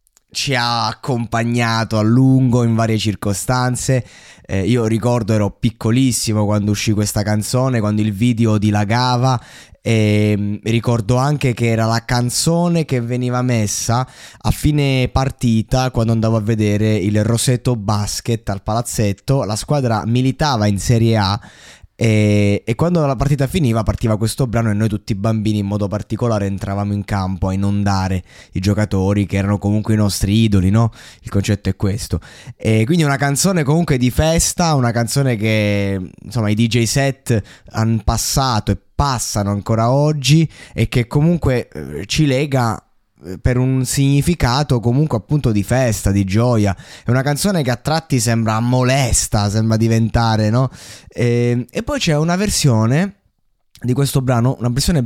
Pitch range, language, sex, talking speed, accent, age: 105-130 Hz, Italian, male, 155 wpm, native, 20-39